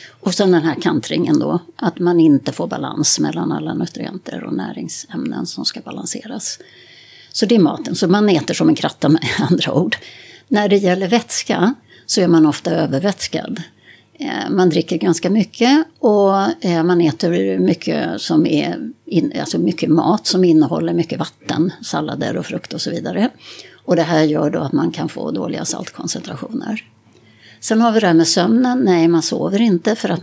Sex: female